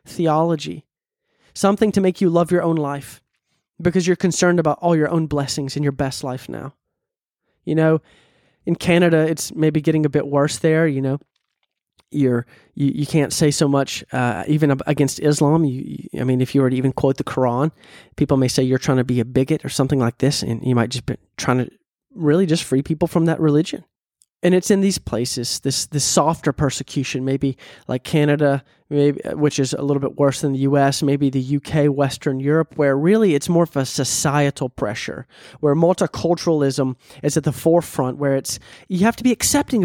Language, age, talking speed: English, 20-39, 195 wpm